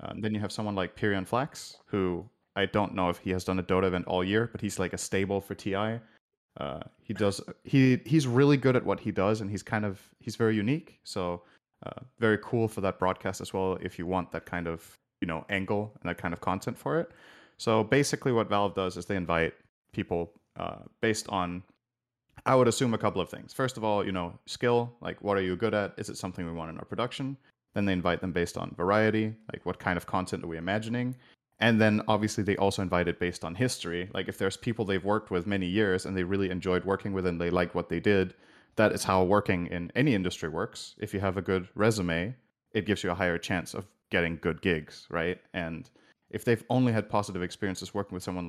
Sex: male